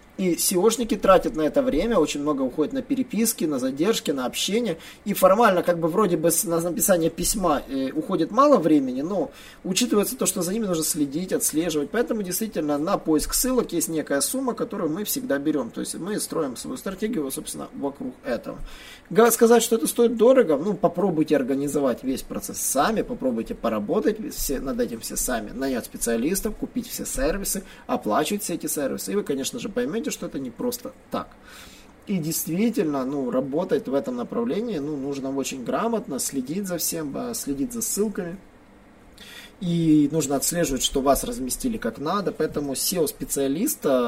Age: 20-39